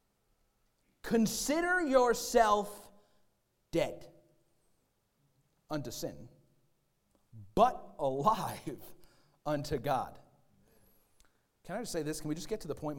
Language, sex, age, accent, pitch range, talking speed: English, male, 40-59, American, 135-195 Hz, 95 wpm